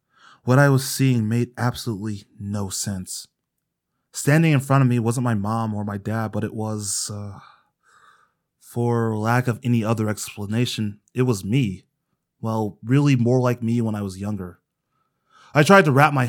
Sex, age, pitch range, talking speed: male, 20-39, 110-135 Hz, 170 wpm